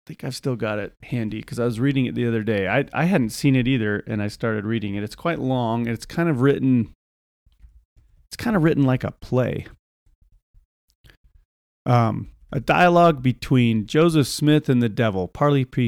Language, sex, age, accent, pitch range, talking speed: English, male, 40-59, American, 115-150 Hz, 195 wpm